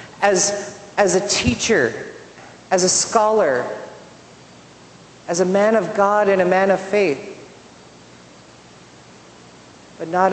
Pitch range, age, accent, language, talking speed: 150-200 Hz, 40-59, American, English, 110 wpm